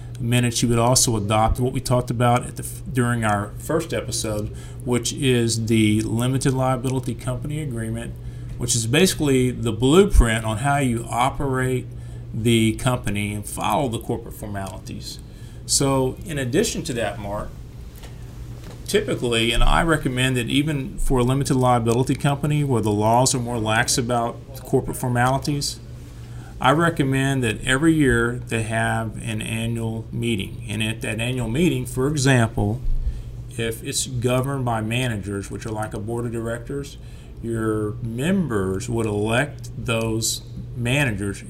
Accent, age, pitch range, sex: American, 40-59, 115-135 Hz, male